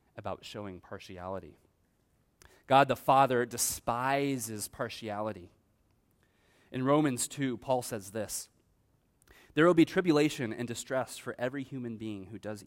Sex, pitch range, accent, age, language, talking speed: male, 105-140 Hz, American, 30-49, English, 125 wpm